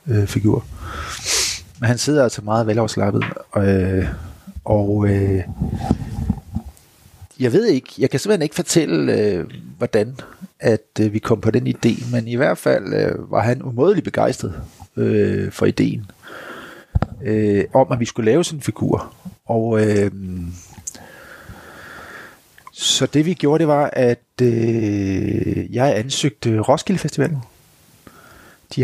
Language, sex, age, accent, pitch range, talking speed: English, male, 30-49, Danish, 105-135 Hz, 115 wpm